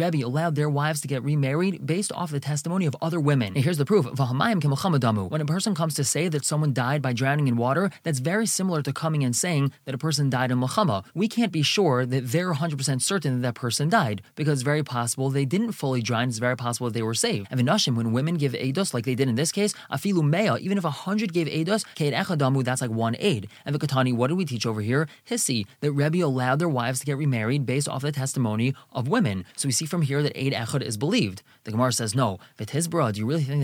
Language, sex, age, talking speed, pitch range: English, male, 20-39, 250 wpm, 130-170 Hz